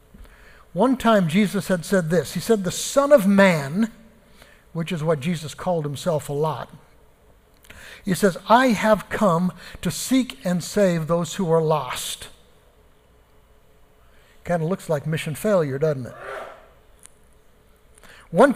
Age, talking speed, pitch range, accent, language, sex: 60-79, 135 wpm, 145-185 Hz, American, English, male